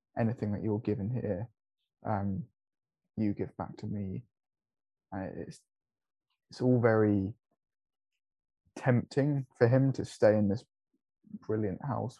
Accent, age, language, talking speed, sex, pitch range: British, 10-29, English, 125 wpm, male, 105-120 Hz